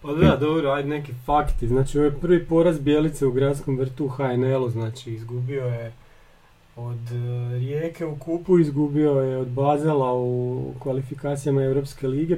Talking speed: 155 wpm